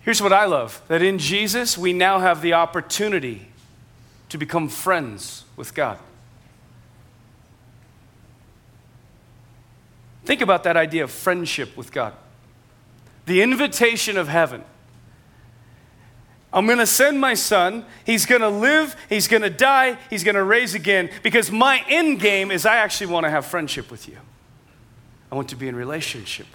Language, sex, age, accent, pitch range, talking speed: English, male, 40-59, American, 120-175 Hz, 150 wpm